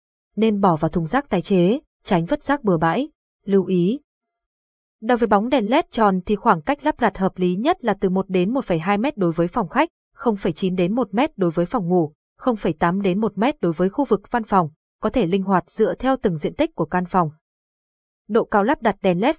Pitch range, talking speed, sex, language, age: 180-245 Hz, 220 wpm, female, Vietnamese, 20-39